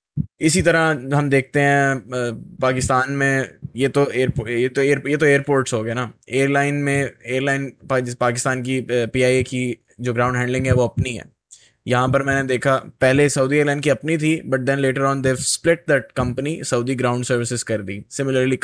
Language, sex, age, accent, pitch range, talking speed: English, male, 10-29, Indian, 125-150 Hz, 105 wpm